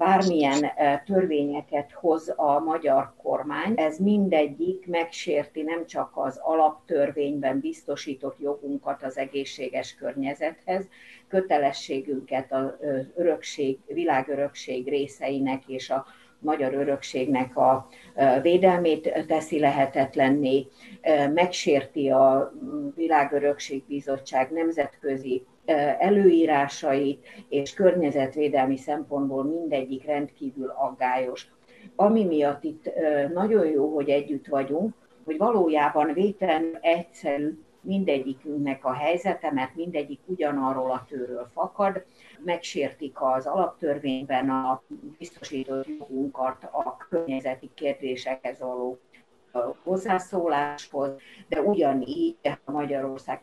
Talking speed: 85 wpm